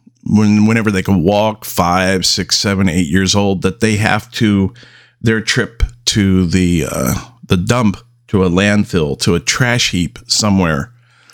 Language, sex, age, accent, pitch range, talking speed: English, male, 50-69, American, 100-120 Hz, 155 wpm